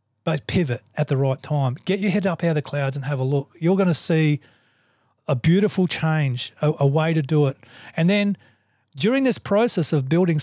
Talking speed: 220 wpm